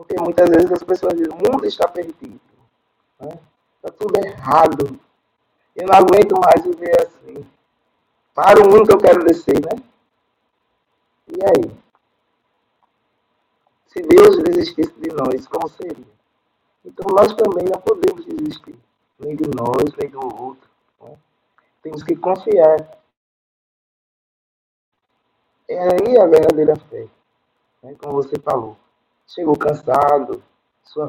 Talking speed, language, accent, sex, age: 125 wpm, Portuguese, Brazilian, male, 50-69